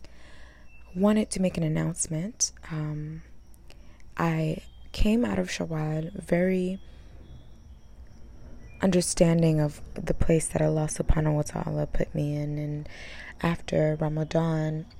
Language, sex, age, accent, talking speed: English, female, 20-39, American, 110 wpm